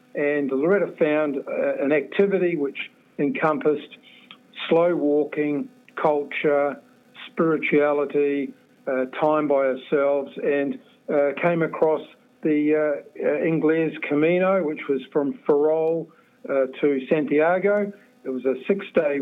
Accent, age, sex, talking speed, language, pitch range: Australian, 50-69, male, 110 wpm, English, 145-180 Hz